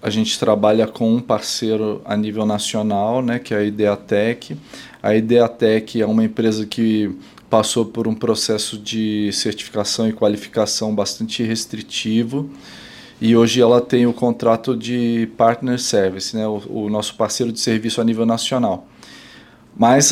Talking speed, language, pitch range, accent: 150 wpm, Portuguese, 115-130 Hz, Brazilian